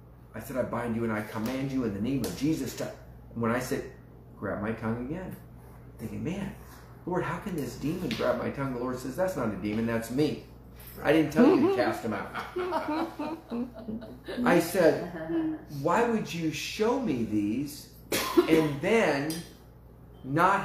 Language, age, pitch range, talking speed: English, 40-59, 105-150 Hz, 175 wpm